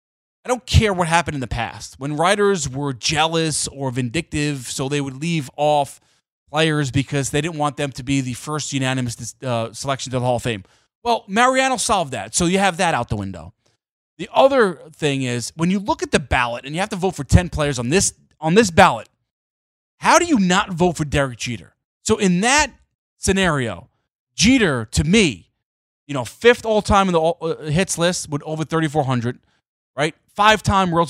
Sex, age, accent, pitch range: male, 30-49, American, 120-170 Hz